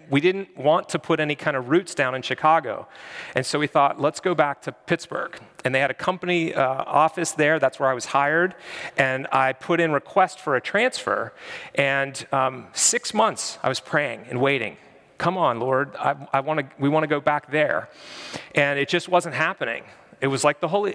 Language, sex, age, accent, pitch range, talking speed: English, male, 40-59, American, 135-170 Hz, 205 wpm